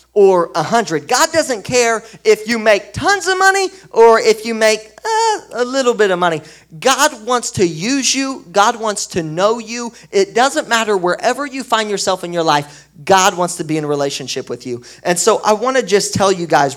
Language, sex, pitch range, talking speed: English, male, 140-205 Hz, 215 wpm